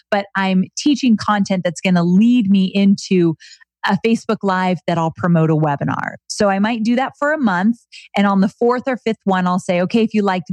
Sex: female